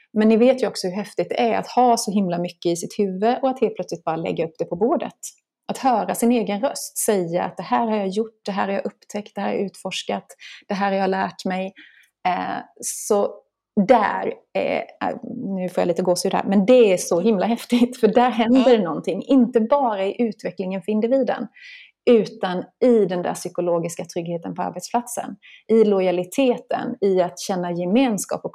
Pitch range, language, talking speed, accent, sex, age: 190-240 Hz, Swedish, 200 wpm, native, female, 30-49